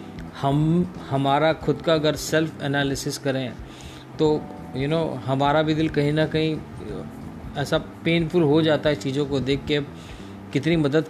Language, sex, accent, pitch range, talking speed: Hindi, male, native, 130-165 Hz, 150 wpm